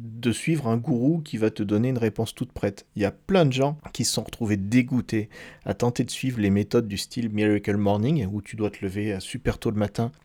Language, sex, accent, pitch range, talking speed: French, male, French, 100-125 Hz, 245 wpm